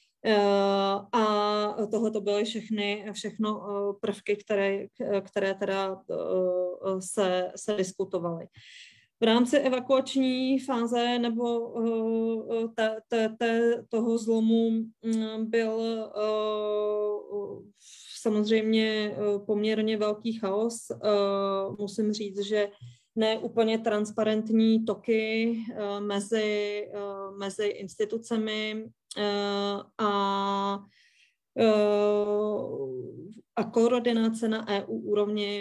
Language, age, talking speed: Czech, 20-39, 65 wpm